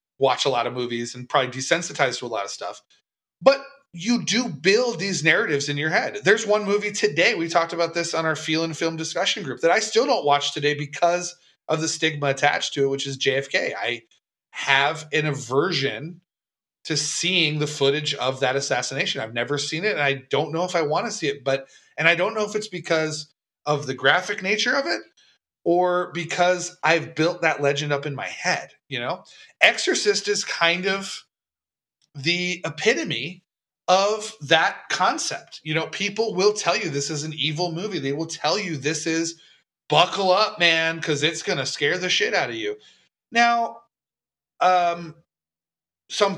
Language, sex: English, male